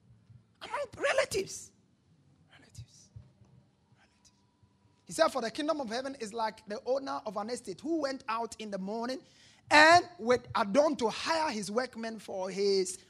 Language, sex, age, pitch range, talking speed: English, male, 30-49, 195-275 Hz, 145 wpm